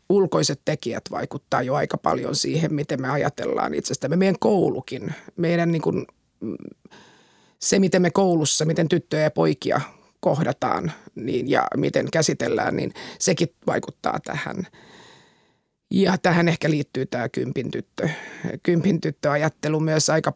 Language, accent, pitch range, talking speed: Finnish, native, 150-175 Hz, 130 wpm